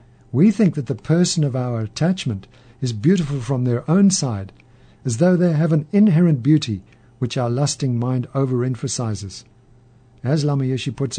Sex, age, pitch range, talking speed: male, 50-69, 120-155 Hz, 160 wpm